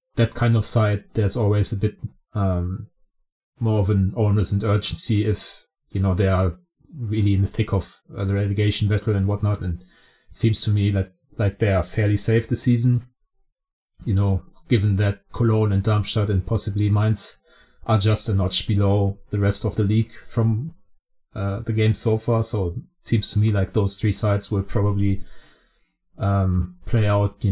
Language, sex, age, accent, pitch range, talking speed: English, male, 30-49, German, 100-115 Hz, 185 wpm